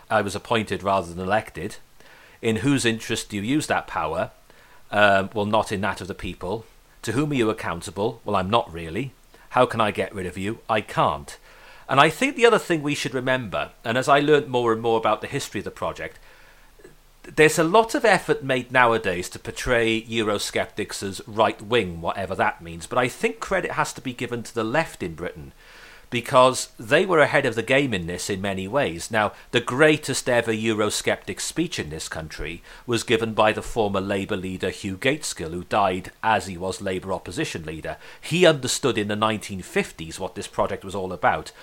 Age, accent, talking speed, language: 40-59, British, 200 wpm, English